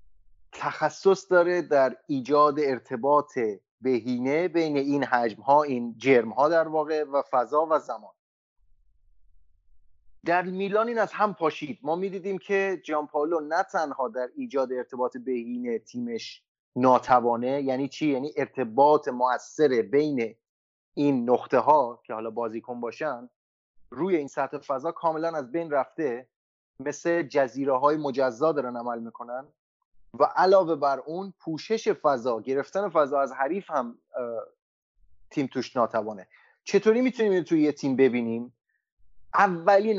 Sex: male